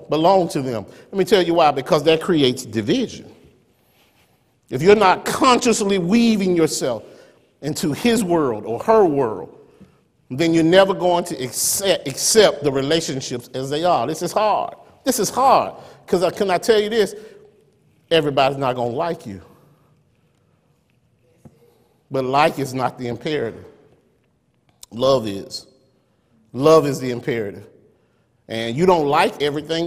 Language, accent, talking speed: English, American, 140 wpm